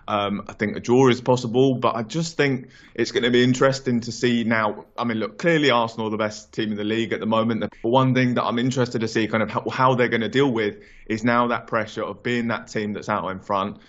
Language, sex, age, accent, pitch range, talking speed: English, male, 20-39, British, 105-120 Hz, 270 wpm